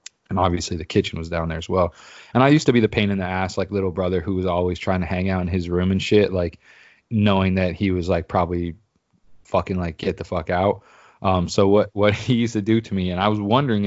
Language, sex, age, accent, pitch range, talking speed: English, male, 20-39, American, 90-110 Hz, 265 wpm